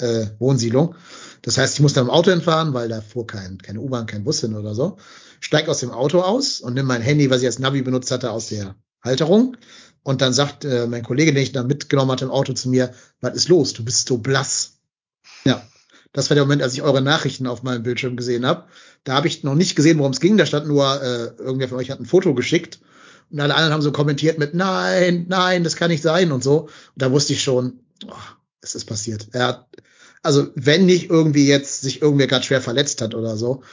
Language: German